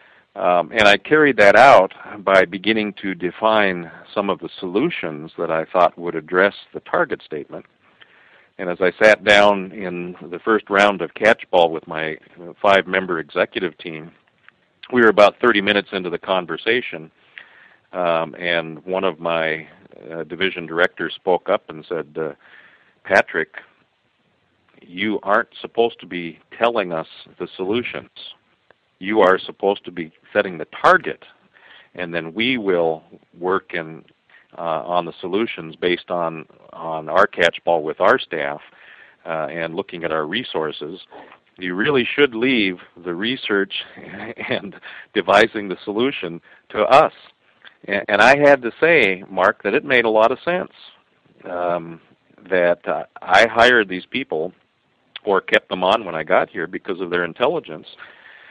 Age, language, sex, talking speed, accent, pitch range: 50-69, English, male, 150 wpm, American, 85-105 Hz